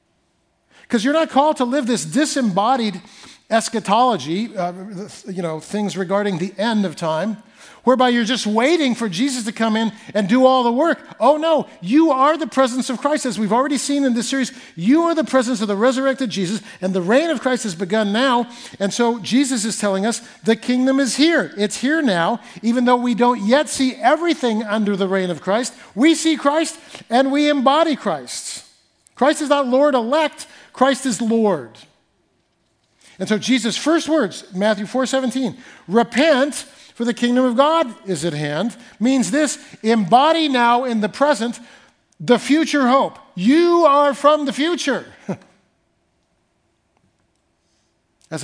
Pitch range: 215-280 Hz